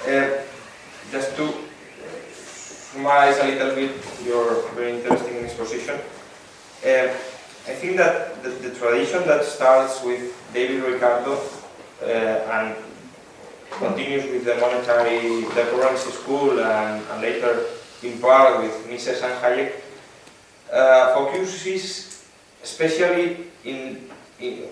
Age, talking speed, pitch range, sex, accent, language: 20-39, 110 wpm, 125-160 Hz, male, Spanish, English